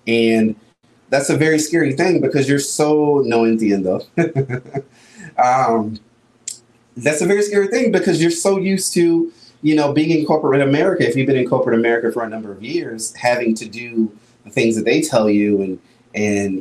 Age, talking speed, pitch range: 30-49, 180 wpm, 110-140 Hz